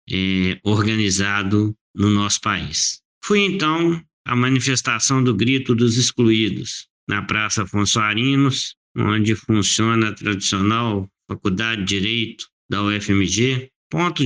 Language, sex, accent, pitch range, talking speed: Portuguese, male, Brazilian, 105-130 Hz, 105 wpm